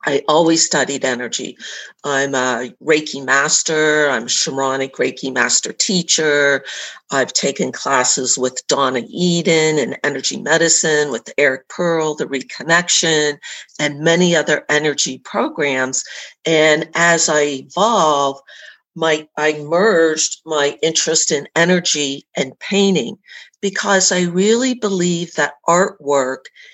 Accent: American